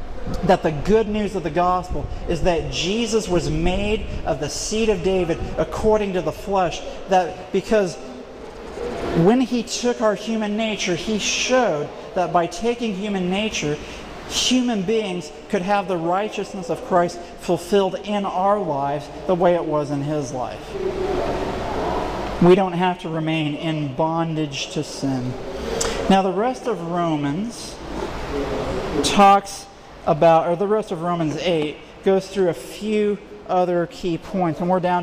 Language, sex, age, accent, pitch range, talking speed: English, male, 40-59, American, 165-200 Hz, 150 wpm